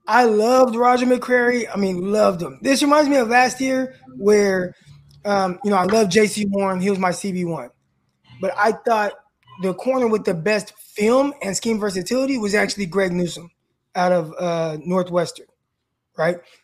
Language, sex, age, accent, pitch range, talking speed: English, male, 20-39, American, 180-220 Hz, 170 wpm